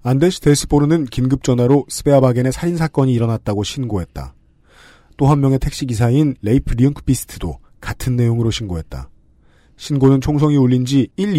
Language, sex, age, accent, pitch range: Korean, male, 40-59, native, 85-140 Hz